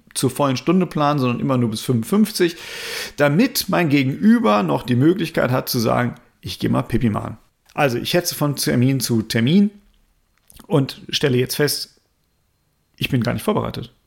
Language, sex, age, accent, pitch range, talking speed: German, male, 40-59, German, 125-180 Hz, 165 wpm